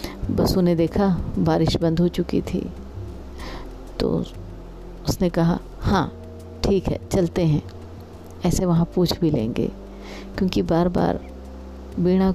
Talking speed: 120 wpm